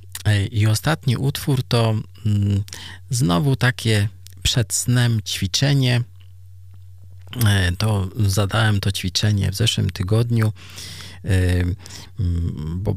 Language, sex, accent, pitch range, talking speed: Polish, male, native, 95-120 Hz, 80 wpm